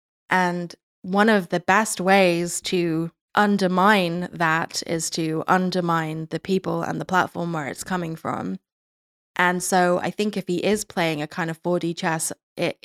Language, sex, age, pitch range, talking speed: English, female, 10-29, 165-190 Hz, 165 wpm